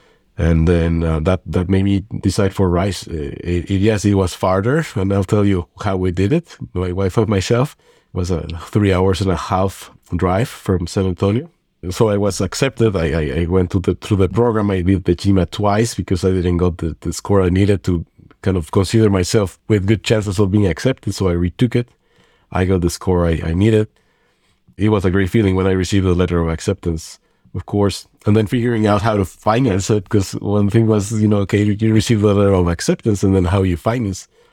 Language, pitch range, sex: English, 90-105 Hz, male